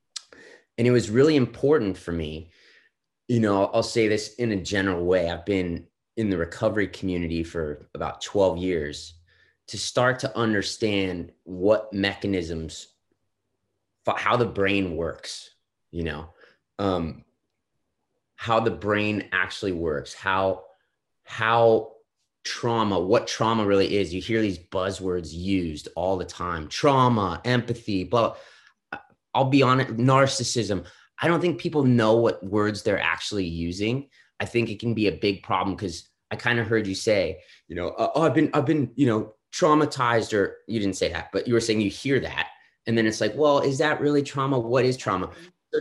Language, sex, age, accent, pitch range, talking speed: English, male, 30-49, American, 95-120 Hz, 165 wpm